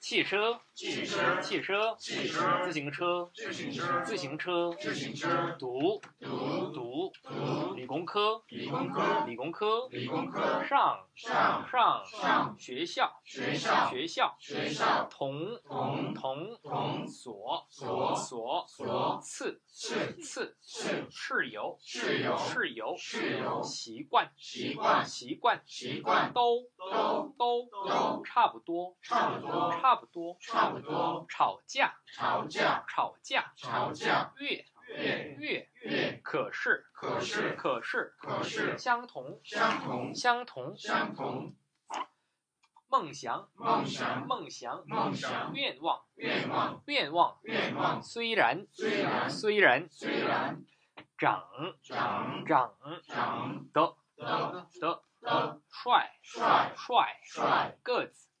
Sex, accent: male, Chinese